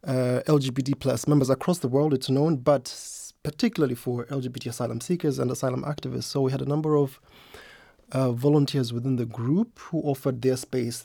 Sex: male